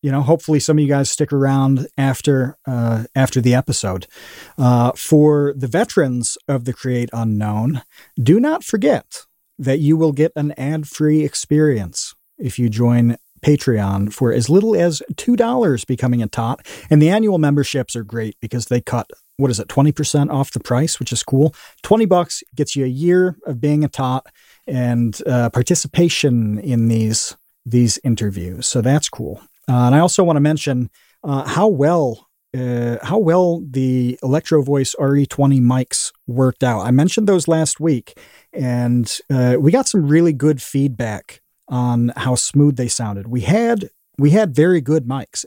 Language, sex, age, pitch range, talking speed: English, male, 40-59, 120-150 Hz, 170 wpm